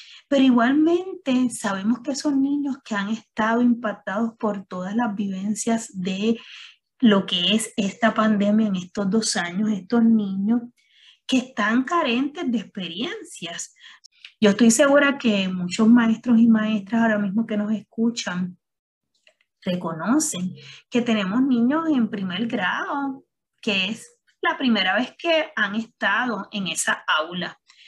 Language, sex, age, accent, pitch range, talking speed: Spanish, female, 20-39, American, 195-255 Hz, 135 wpm